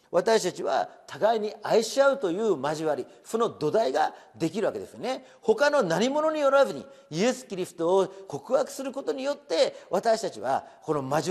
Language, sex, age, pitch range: Japanese, male, 40-59, 170-270 Hz